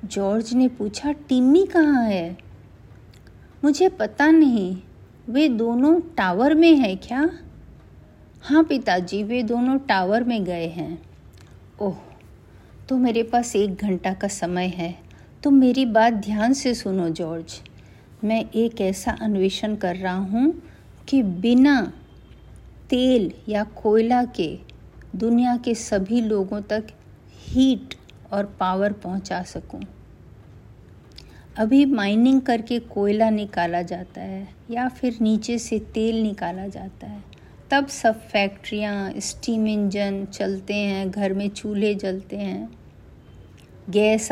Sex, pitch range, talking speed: female, 180-240 Hz, 120 wpm